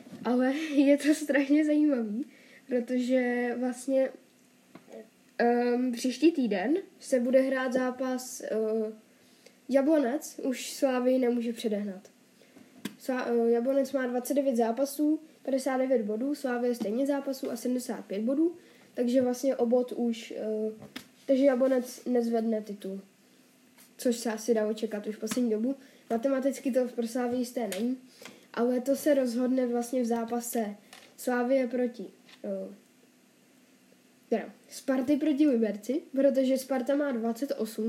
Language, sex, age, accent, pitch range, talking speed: Czech, female, 10-29, native, 235-275 Hz, 120 wpm